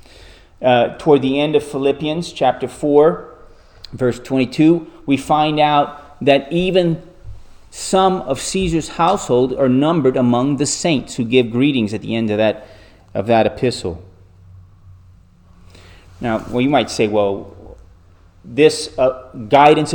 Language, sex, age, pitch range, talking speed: English, male, 30-49, 100-140 Hz, 130 wpm